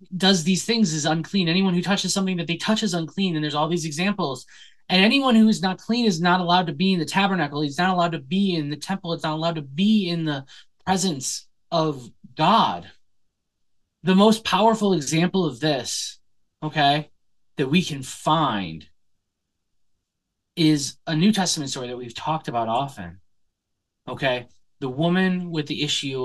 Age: 20-39